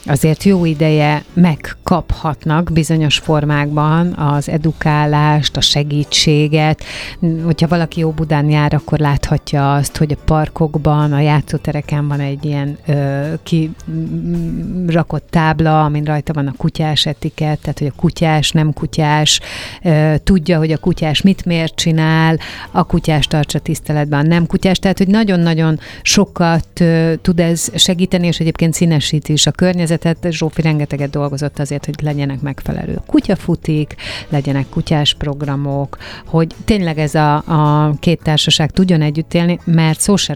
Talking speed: 140 wpm